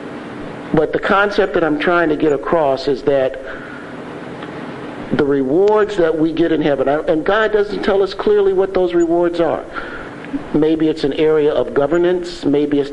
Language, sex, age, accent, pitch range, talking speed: English, male, 50-69, American, 155-215 Hz, 165 wpm